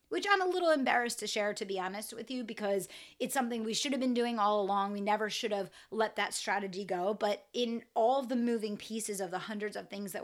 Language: English